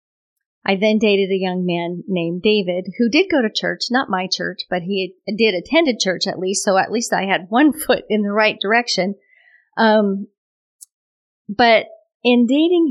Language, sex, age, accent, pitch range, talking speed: English, female, 40-59, American, 175-215 Hz, 180 wpm